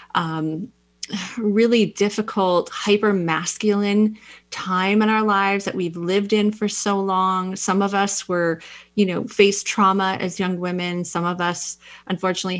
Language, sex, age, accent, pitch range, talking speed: English, female, 30-49, American, 170-200 Hz, 150 wpm